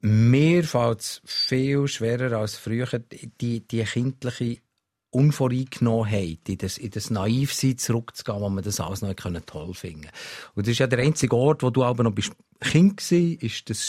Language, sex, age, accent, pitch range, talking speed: German, male, 50-69, Austrian, 115-145 Hz, 175 wpm